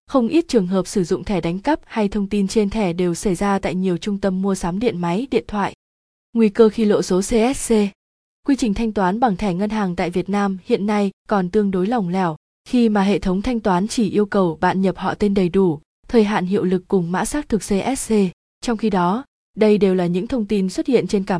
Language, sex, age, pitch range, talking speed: Vietnamese, female, 20-39, 185-225 Hz, 245 wpm